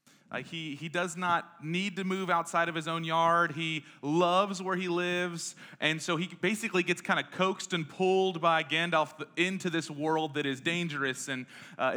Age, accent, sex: 30-49, American, male